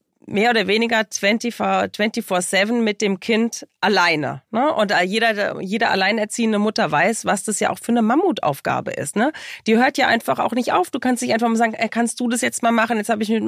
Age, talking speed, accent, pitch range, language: 30-49, 215 wpm, German, 190-230 Hz, German